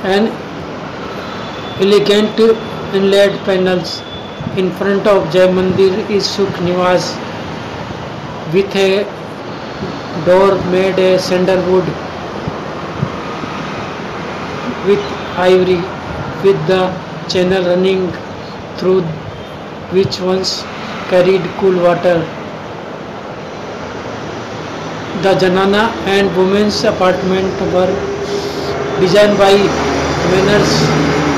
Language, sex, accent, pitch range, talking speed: Hindi, male, native, 180-195 Hz, 75 wpm